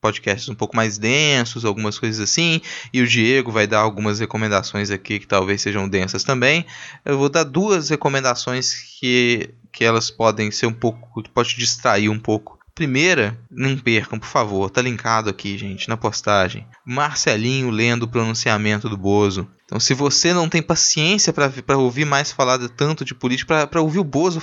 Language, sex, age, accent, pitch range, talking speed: Portuguese, male, 20-39, Brazilian, 110-160 Hz, 175 wpm